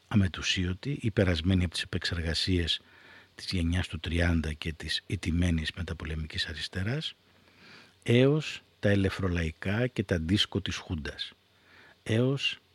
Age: 50-69